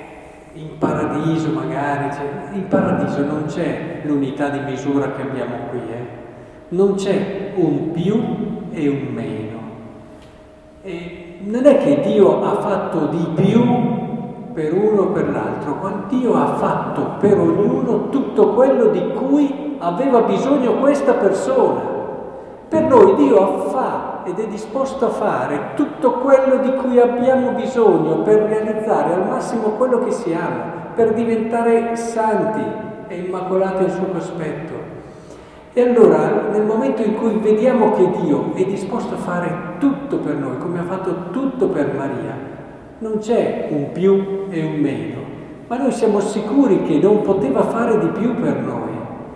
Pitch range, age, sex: 160-230 Hz, 50-69, male